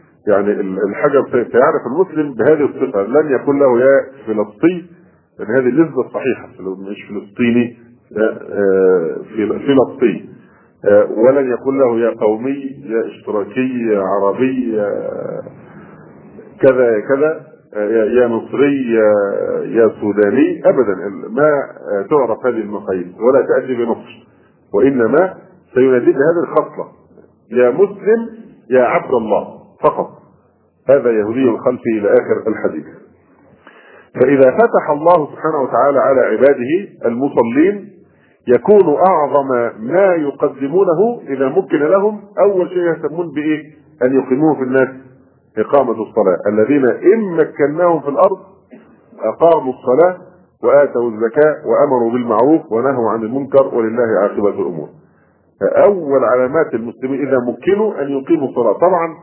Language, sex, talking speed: Arabic, male, 110 wpm